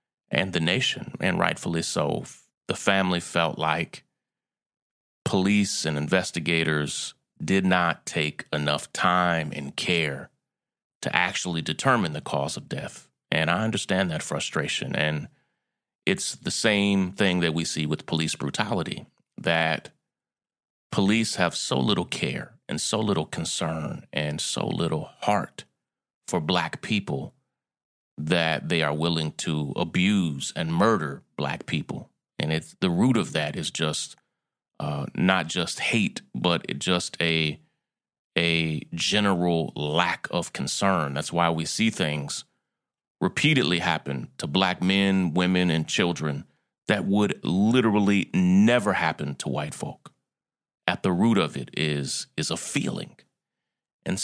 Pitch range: 80-95 Hz